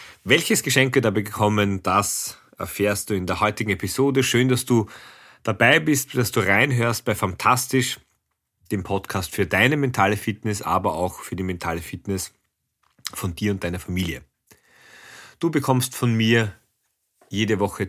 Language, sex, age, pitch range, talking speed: German, male, 40-59, 95-120 Hz, 150 wpm